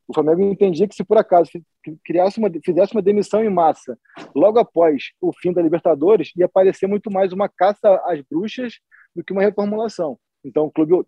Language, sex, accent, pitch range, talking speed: Portuguese, male, Brazilian, 160-195 Hz, 190 wpm